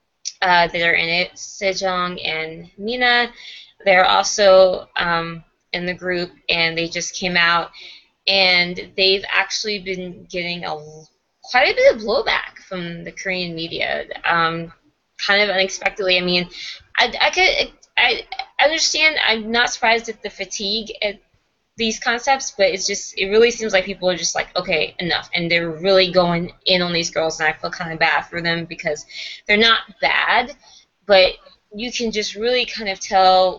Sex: female